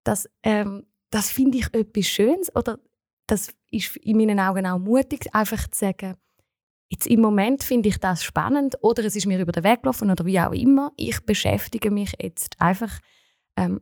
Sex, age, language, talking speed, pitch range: female, 20-39, German, 185 wpm, 185-235 Hz